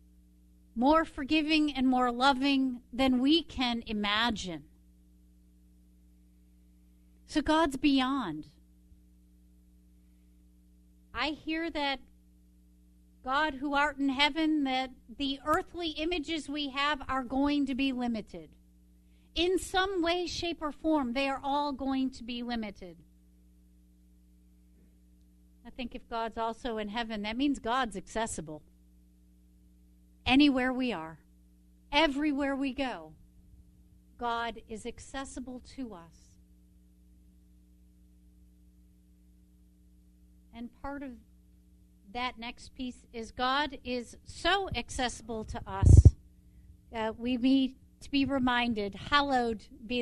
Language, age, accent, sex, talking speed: English, 50-69, American, female, 105 wpm